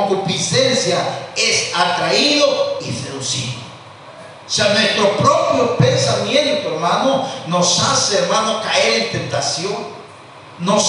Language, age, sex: Spanish, 50-69, male